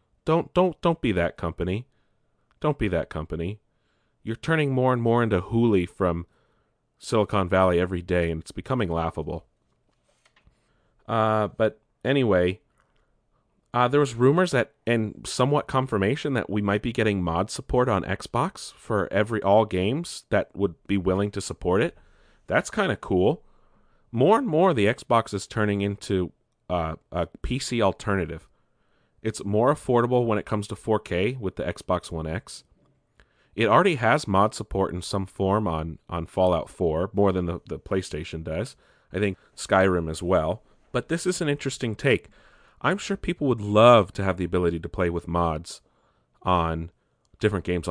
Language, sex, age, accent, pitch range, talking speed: English, male, 40-59, American, 90-115 Hz, 165 wpm